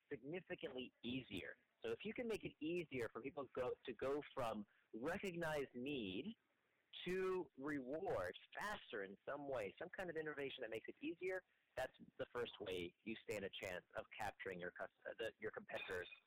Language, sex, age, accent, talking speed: English, male, 40-59, American, 160 wpm